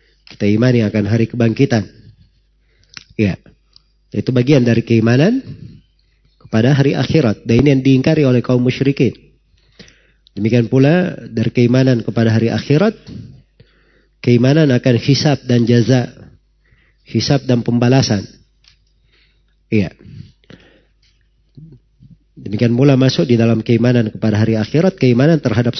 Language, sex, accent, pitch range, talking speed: Indonesian, male, native, 115-135 Hz, 105 wpm